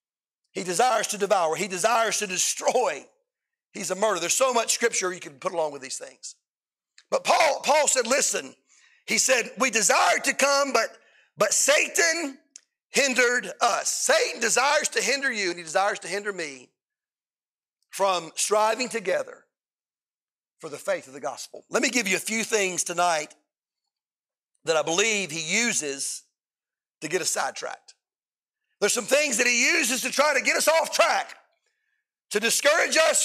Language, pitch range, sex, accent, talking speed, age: English, 205-320 Hz, male, American, 165 wpm, 40-59